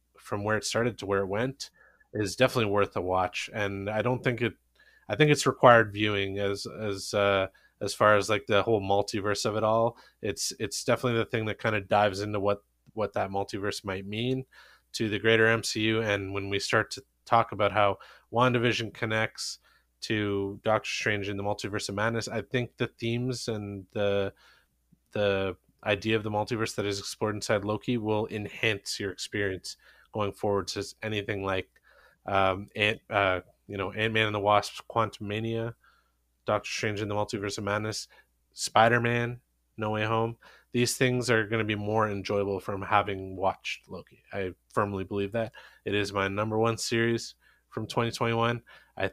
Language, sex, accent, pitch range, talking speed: English, male, American, 100-115 Hz, 175 wpm